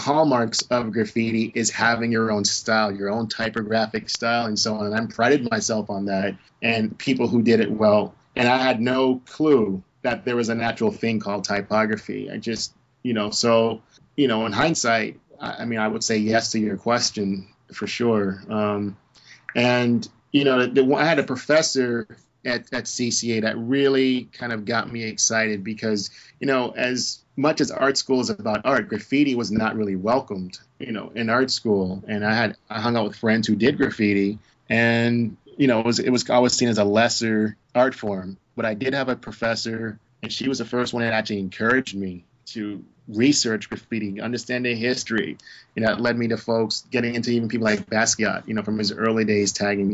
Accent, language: American, English